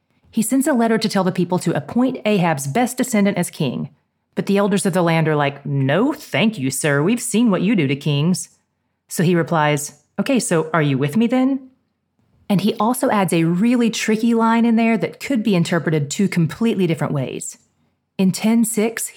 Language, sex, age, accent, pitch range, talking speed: English, female, 30-49, American, 155-210 Hz, 200 wpm